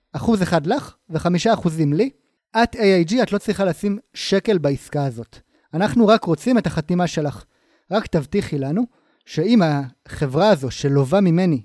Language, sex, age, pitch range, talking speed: Hebrew, male, 30-49, 145-205 Hz, 150 wpm